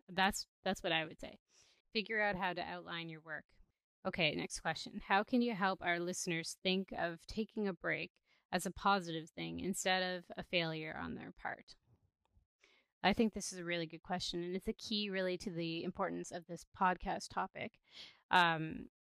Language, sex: English, female